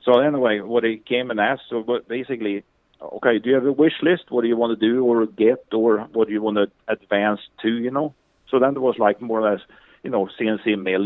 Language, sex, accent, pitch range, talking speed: English, male, Norwegian, 100-120 Hz, 250 wpm